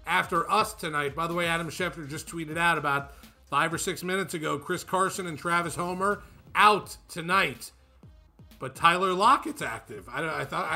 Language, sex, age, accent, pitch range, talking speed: English, male, 40-59, American, 140-170 Hz, 175 wpm